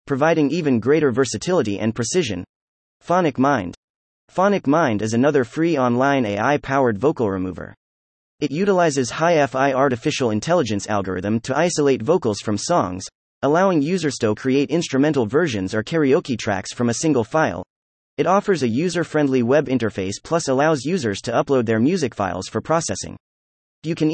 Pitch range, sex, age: 110-155 Hz, male, 30-49